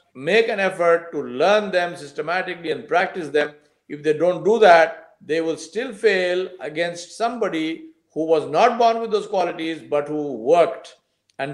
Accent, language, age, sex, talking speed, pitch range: Indian, English, 50-69, male, 165 wpm, 150-215 Hz